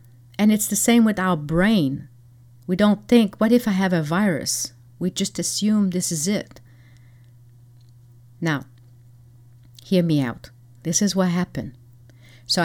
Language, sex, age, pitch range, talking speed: English, female, 40-59, 125-190 Hz, 145 wpm